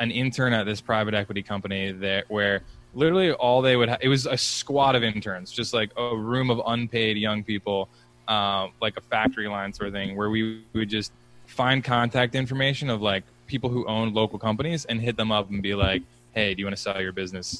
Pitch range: 100-120 Hz